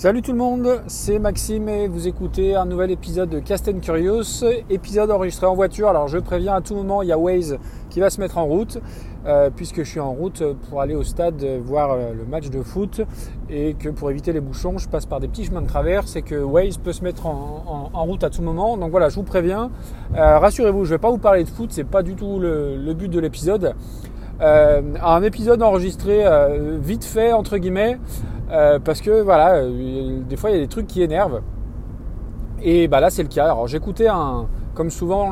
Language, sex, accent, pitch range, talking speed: French, male, French, 140-190 Hz, 230 wpm